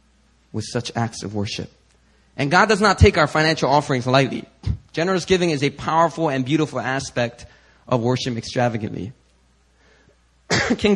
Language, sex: English, male